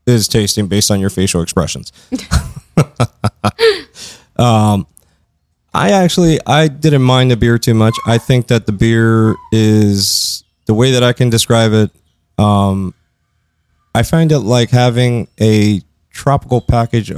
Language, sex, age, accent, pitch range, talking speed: English, male, 20-39, American, 105-125 Hz, 135 wpm